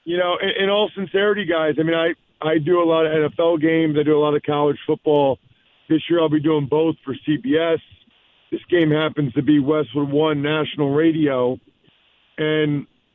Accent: American